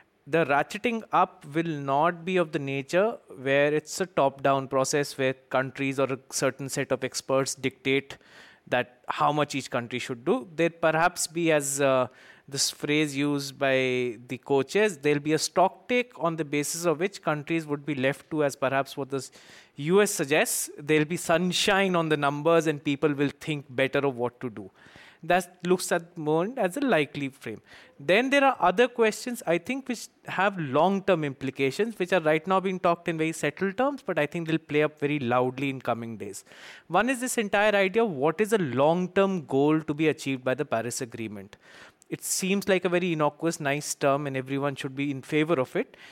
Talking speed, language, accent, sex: 200 wpm, English, Indian, male